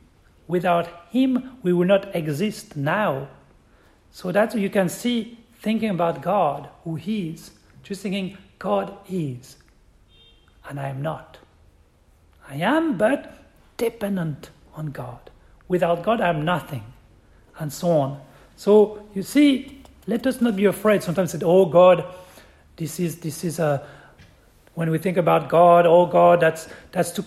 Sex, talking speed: male, 150 wpm